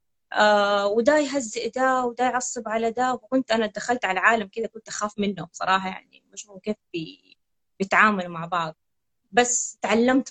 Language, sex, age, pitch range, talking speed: Arabic, female, 20-39, 185-230 Hz, 150 wpm